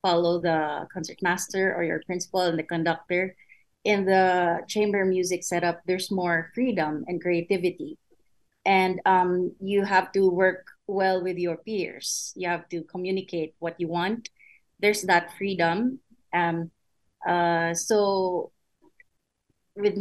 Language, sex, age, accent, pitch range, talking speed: English, female, 30-49, Filipino, 170-190 Hz, 130 wpm